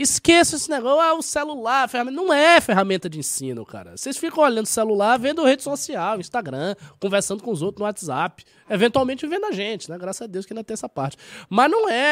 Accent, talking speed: Brazilian, 215 wpm